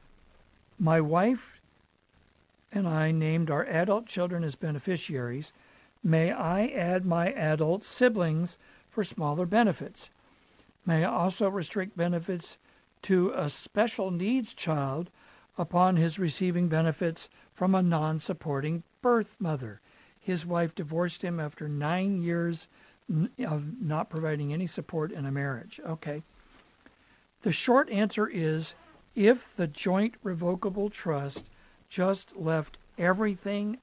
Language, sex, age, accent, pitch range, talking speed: English, male, 60-79, American, 155-195 Hz, 115 wpm